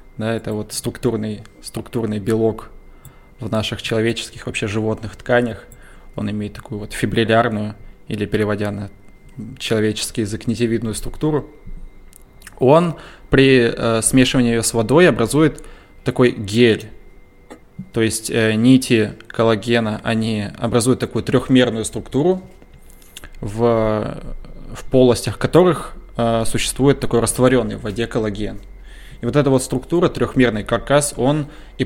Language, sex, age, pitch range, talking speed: Russian, male, 20-39, 110-125 Hz, 115 wpm